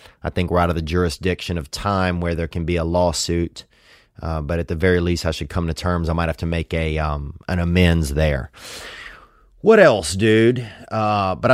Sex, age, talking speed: male, 30-49, 215 wpm